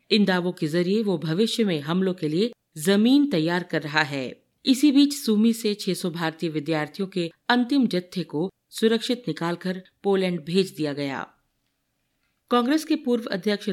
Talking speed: 155 wpm